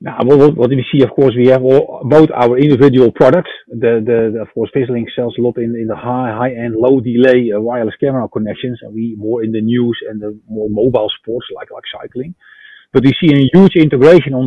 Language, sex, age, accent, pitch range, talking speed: English, male, 40-59, Dutch, 120-145 Hz, 230 wpm